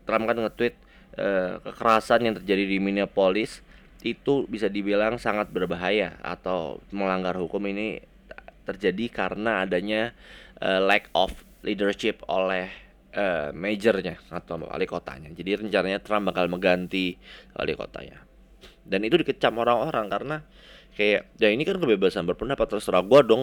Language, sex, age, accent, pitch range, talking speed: Indonesian, male, 20-39, native, 90-110 Hz, 130 wpm